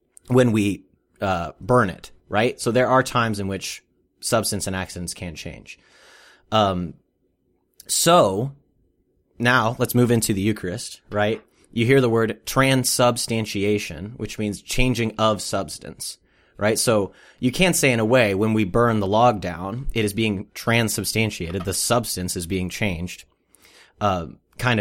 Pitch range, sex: 95-115 Hz, male